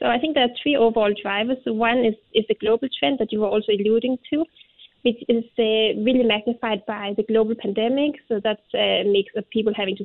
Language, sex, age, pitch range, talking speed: English, female, 20-39, 205-245 Hz, 220 wpm